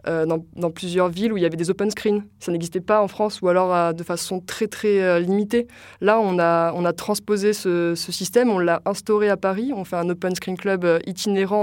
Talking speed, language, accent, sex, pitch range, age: 245 wpm, French, French, female, 175-205 Hz, 20-39